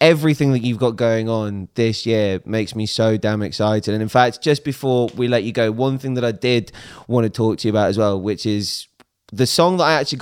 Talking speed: 245 wpm